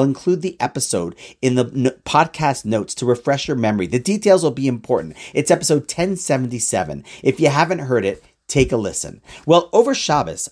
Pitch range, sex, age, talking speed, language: 125-185 Hz, male, 40-59, 175 wpm, English